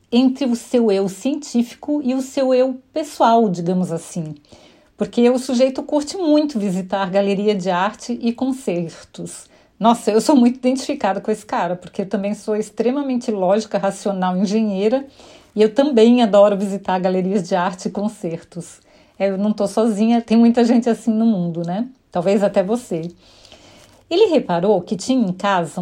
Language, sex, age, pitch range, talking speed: Portuguese, female, 40-59, 195-255 Hz, 165 wpm